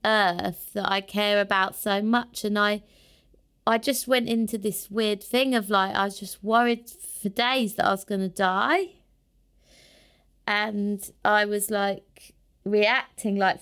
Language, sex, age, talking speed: English, female, 20-39, 155 wpm